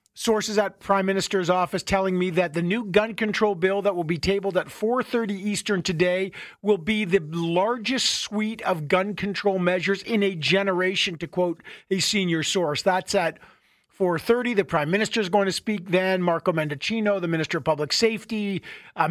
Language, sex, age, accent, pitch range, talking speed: English, male, 50-69, American, 185-215 Hz, 180 wpm